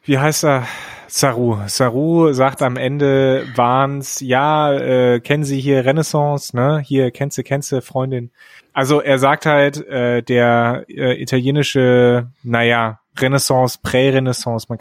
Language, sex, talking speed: German, male, 140 wpm